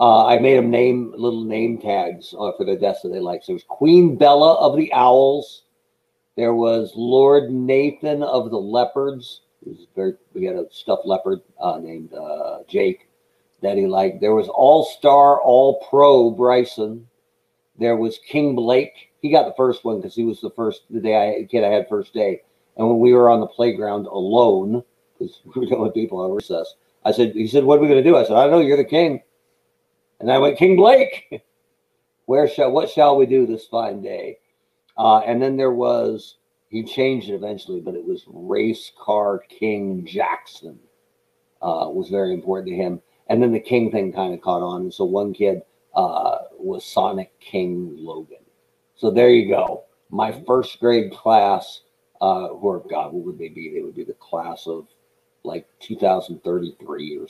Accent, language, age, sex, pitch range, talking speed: American, English, 50-69, male, 105-145 Hz, 190 wpm